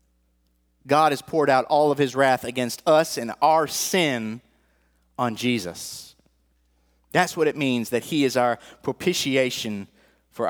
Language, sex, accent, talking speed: English, male, American, 145 wpm